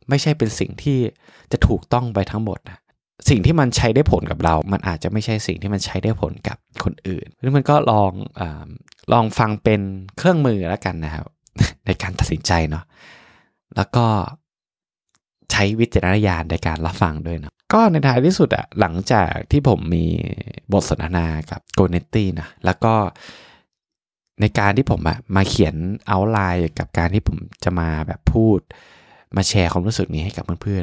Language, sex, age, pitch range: Thai, male, 20-39, 90-115 Hz